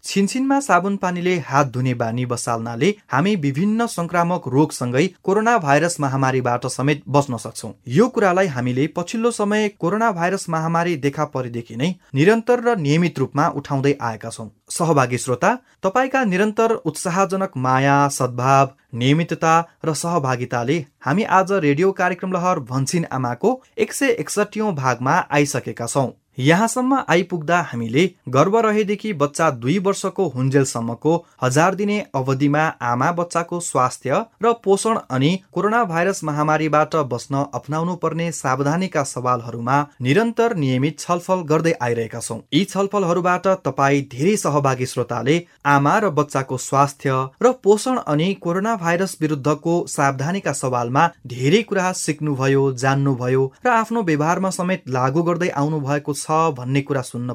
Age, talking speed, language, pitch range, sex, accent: 30-49, 100 wpm, English, 135-190 Hz, male, Indian